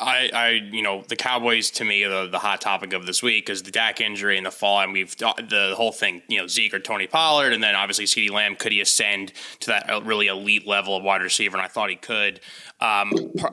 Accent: American